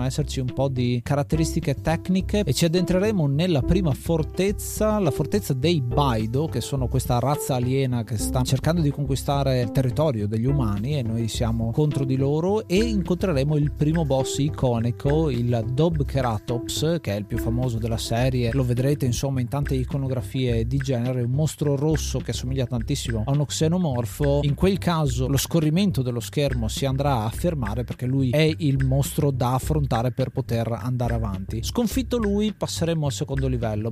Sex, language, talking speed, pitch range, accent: male, Italian, 170 wpm, 125-160 Hz, native